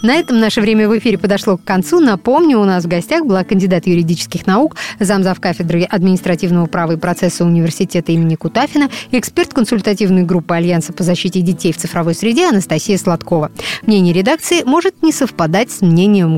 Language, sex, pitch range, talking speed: Russian, female, 175-230 Hz, 165 wpm